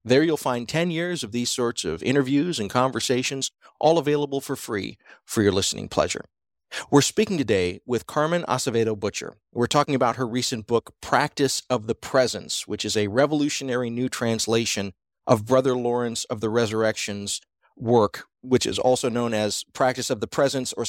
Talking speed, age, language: 170 wpm, 40-59, English